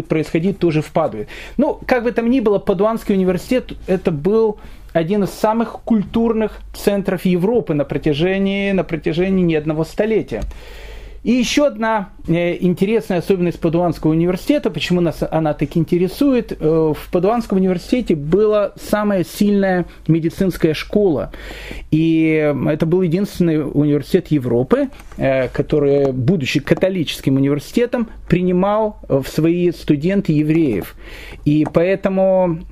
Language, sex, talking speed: Russian, male, 115 wpm